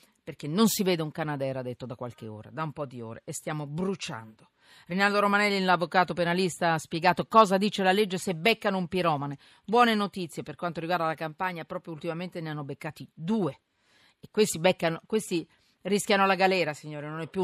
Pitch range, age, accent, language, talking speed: 155-215 Hz, 40-59, native, Italian, 195 wpm